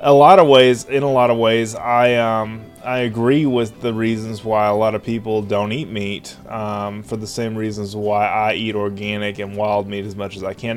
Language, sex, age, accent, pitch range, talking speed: English, male, 20-39, American, 100-115 Hz, 230 wpm